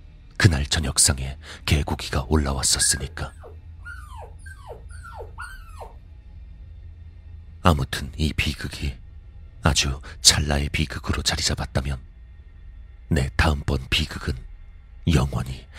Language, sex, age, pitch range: Korean, male, 40-59, 75-85 Hz